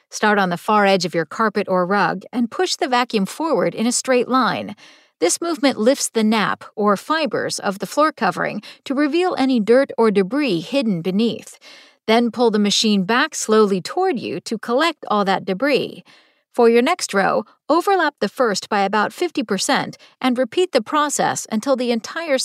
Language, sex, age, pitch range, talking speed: English, female, 50-69, 205-280 Hz, 180 wpm